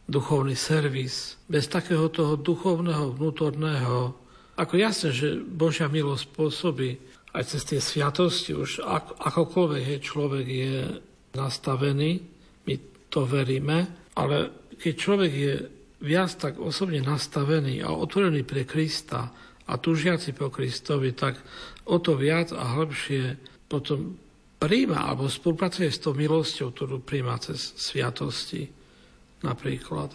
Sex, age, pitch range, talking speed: male, 60-79, 135-165 Hz, 120 wpm